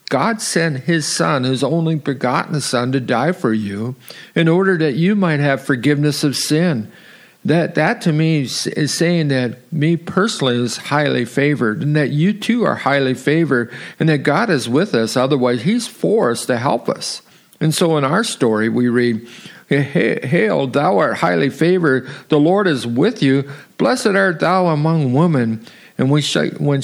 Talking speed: 170 wpm